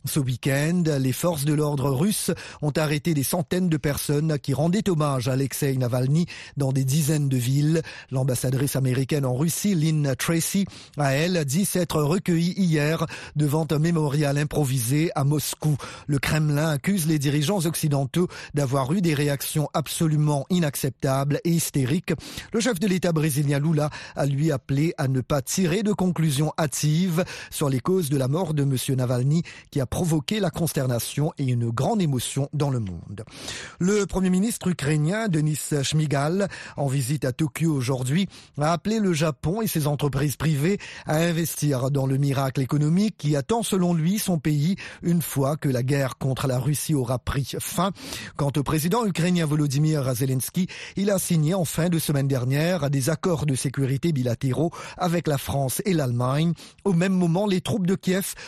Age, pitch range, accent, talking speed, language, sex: 40-59, 140-175 Hz, French, 170 wpm, French, male